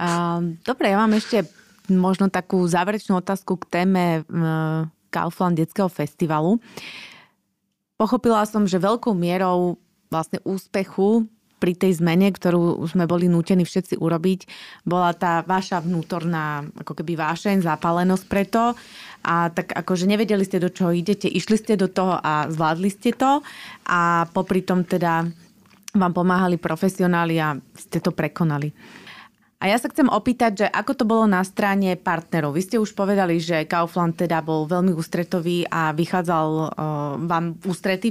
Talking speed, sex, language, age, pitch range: 145 wpm, female, Slovak, 20-39, 170-205 Hz